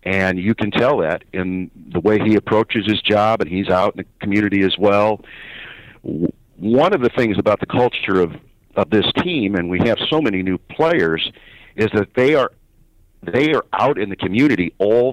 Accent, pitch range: American, 90-110 Hz